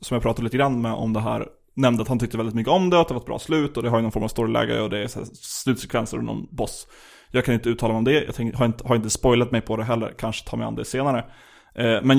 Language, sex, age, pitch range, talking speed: Swedish, male, 20-39, 115-130 Hz, 315 wpm